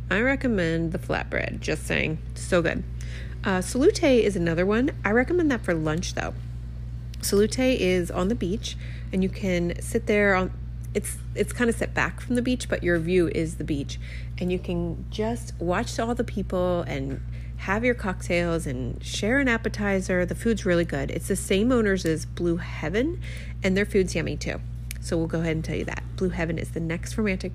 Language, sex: English, female